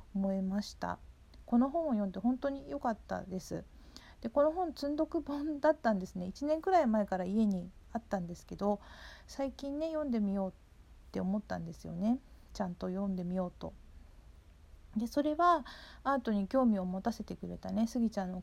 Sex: female